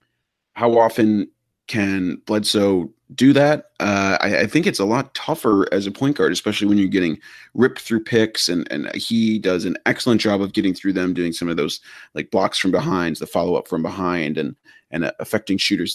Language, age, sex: English, 30-49, male